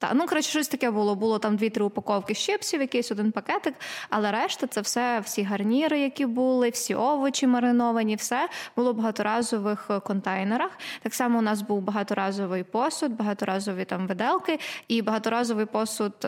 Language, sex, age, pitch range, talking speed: Ukrainian, female, 20-39, 210-255 Hz, 160 wpm